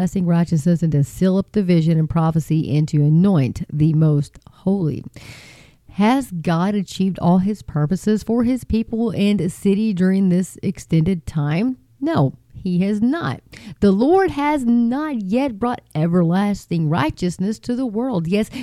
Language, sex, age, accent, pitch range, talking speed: English, female, 40-59, American, 160-215 Hz, 150 wpm